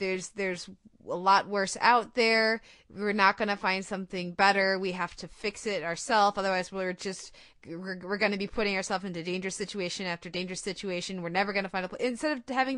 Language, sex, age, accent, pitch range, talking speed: English, female, 30-49, American, 185-225 Hz, 200 wpm